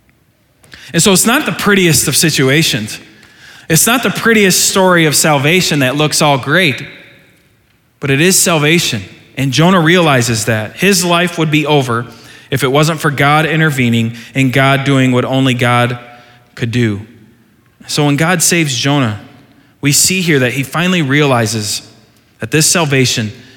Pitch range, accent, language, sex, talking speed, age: 125-175 Hz, American, English, male, 155 wpm, 20-39